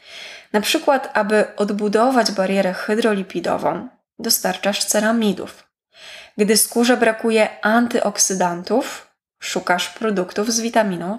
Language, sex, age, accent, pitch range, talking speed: Polish, female, 20-39, native, 195-235 Hz, 85 wpm